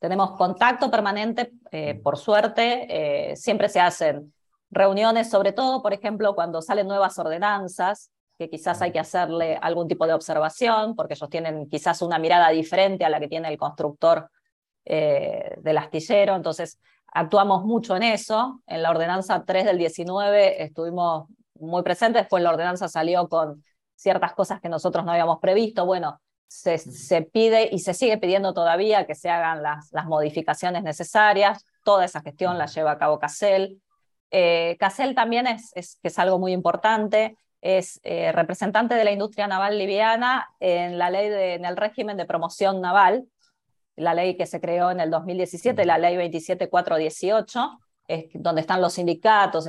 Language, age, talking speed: Spanish, 20-39, 165 wpm